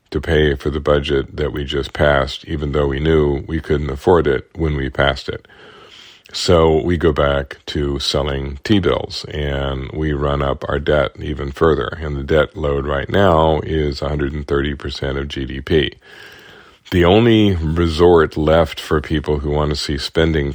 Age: 50-69